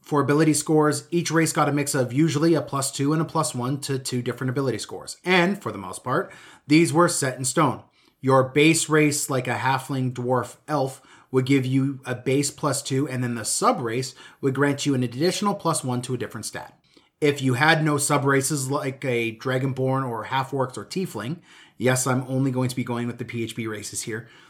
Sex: male